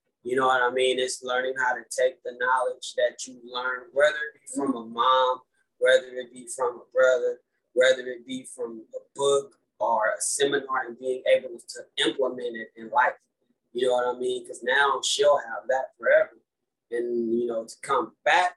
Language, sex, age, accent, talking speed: English, male, 20-39, American, 195 wpm